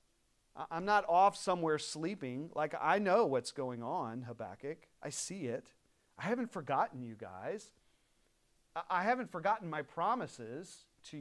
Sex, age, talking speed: male, 40-59, 140 wpm